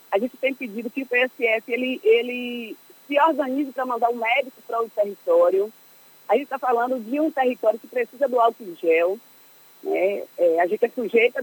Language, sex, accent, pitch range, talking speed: Portuguese, female, Brazilian, 225-280 Hz, 195 wpm